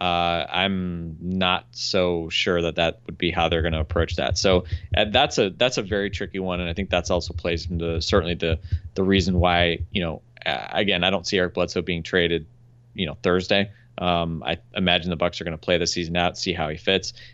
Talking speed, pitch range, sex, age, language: 220 wpm, 85-100 Hz, male, 20-39, English